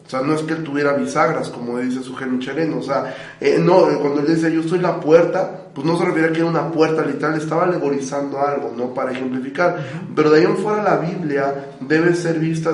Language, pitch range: Spanish, 135-160 Hz